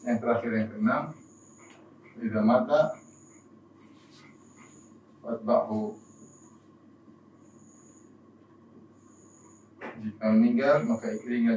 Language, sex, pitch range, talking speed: Indonesian, male, 110-155 Hz, 55 wpm